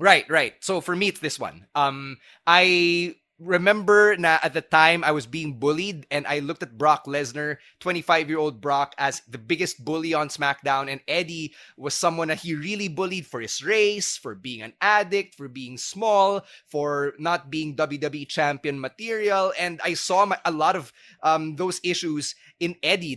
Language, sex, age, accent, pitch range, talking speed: English, male, 20-39, Filipino, 150-185 Hz, 180 wpm